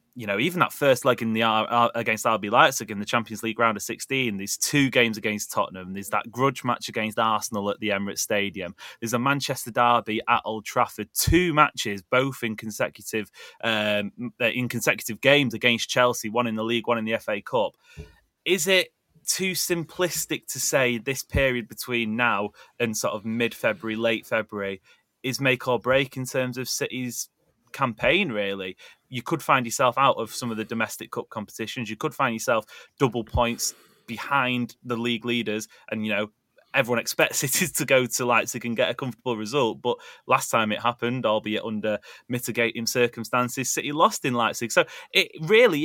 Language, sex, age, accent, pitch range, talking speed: English, male, 20-39, British, 110-130 Hz, 185 wpm